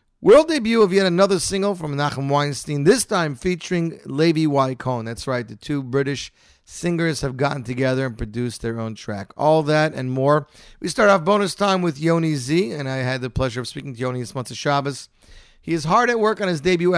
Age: 40-59